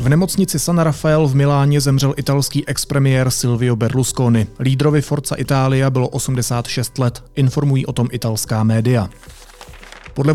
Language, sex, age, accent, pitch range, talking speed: Czech, male, 30-49, native, 125-145 Hz, 135 wpm